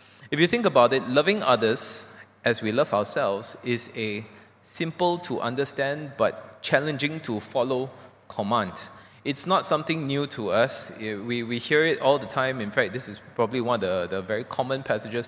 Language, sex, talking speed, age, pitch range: English, male, 180 wpm, 20-39, 110-140 Hz